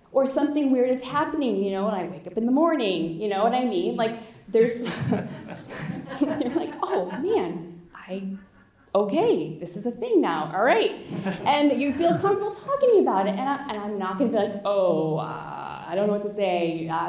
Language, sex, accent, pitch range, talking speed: English, female, American, 180-240 Hz, 205 wpm